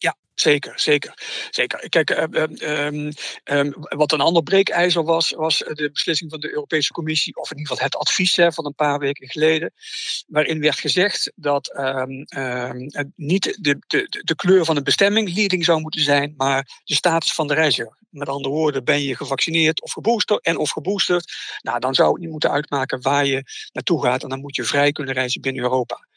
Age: 60-79